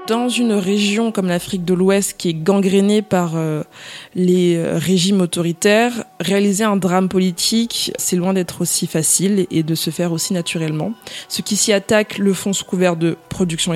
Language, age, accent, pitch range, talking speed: French, 20-39, French, 180-215 Hz, 175 wpm